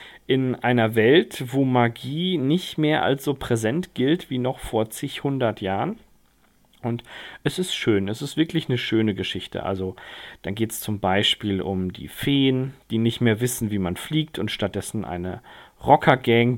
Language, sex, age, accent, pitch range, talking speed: German, male, 40-59, German, 105-135 Hz, 170 wpm